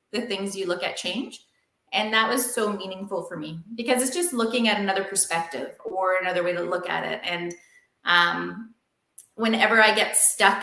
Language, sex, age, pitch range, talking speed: English, female, 20-39, 185-235 Hz, 185 wpm